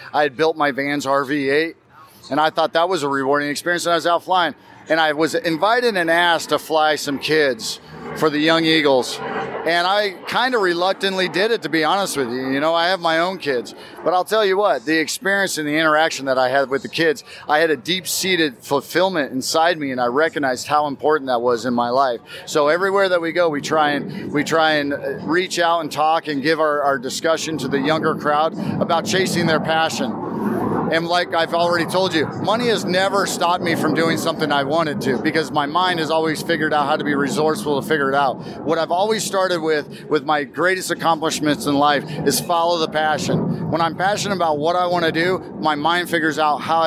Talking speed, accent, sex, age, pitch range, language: 225 wpm, American, male, 40-59, 150-175 Hz, English